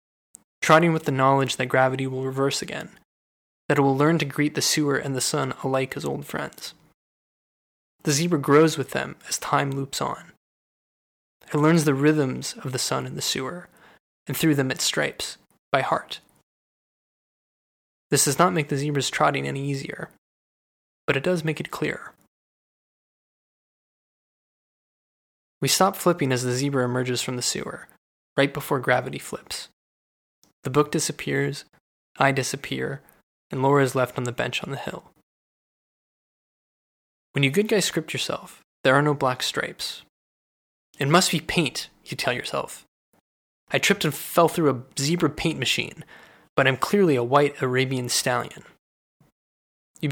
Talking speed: 155 wpm